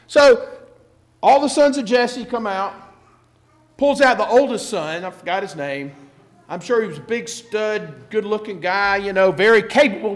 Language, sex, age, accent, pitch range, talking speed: English, male, 50-69, American, 165-260 Hz, 185 wpm